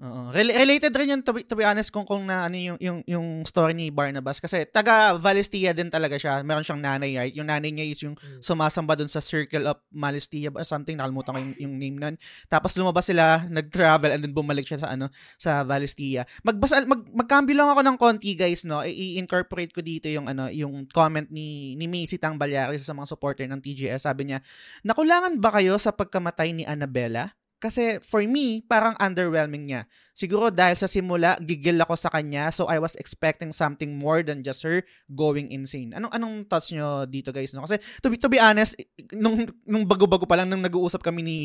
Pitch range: 150-200 Hz